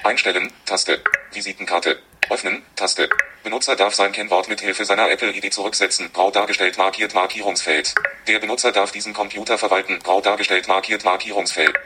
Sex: male